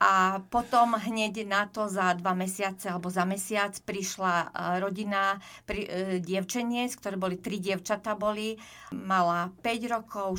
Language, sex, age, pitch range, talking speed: Slovak, female, 40-59, 185-225 Hz, 135 wpm